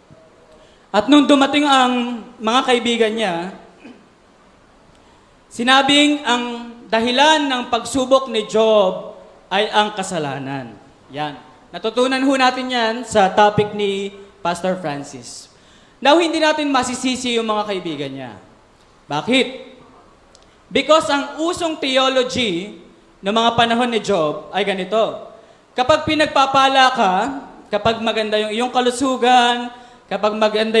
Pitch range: 215-280 Hz